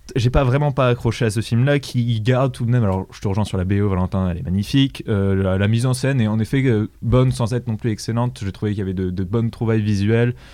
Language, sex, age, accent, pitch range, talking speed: French, male, 20-39, French, 105-125 Hz, 290 wpm